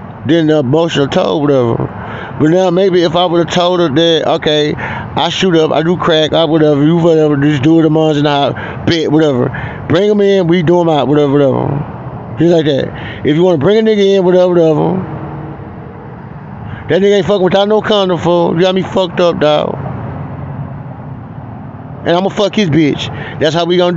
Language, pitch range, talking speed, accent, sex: English, 145-180 Hz, 195 wpm, American, male